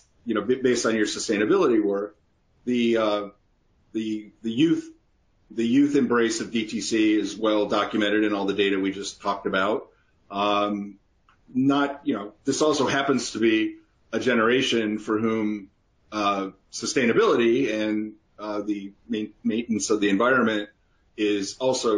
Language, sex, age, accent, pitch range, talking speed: English, male, 40-59, American, 105-125 Hz, 140 wpm